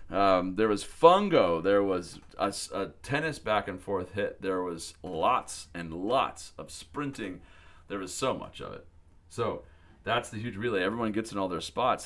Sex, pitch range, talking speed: male, 80-105 Hz, 185 wpm